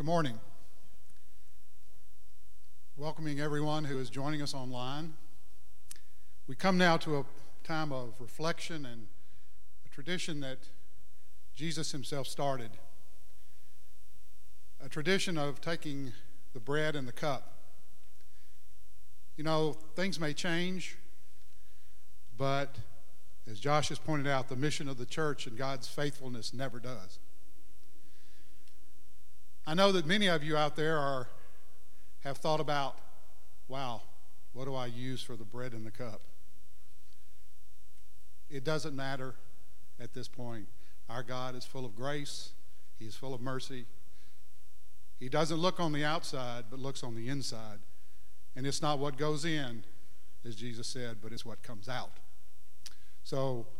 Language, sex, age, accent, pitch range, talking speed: English, male, 50-69, American, 90-140 Hz, 135 wpm